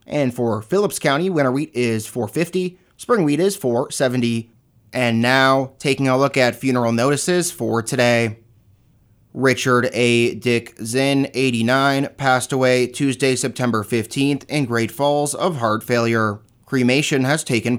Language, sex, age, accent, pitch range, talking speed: English, male, 30-49, American, 115-145 Hz, 140 wpm